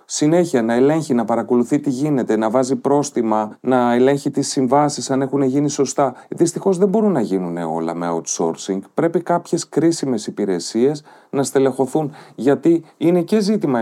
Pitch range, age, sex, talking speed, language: 105-165 Hz, 30-49, male, 155 wpm, Greek